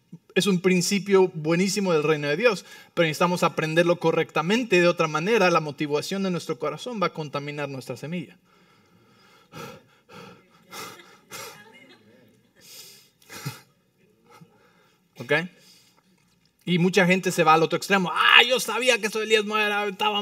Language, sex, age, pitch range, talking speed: English, male, 30-49, 160-205 Hz, 120 wpm